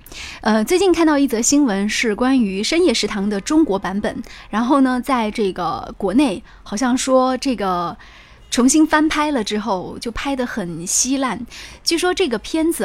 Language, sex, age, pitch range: Chinese, female, 20-39, 205-275 Hz